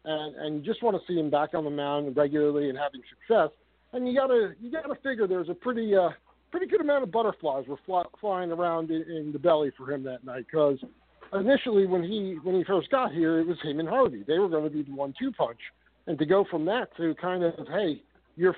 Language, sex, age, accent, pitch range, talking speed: English, male, 50-69, American, 160-210 Hz, 240 wpm